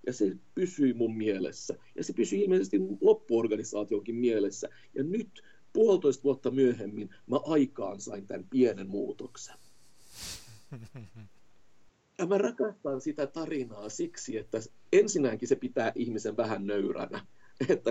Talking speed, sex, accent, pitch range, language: 120 wpm, male, native, 115-170 Hz, Finnish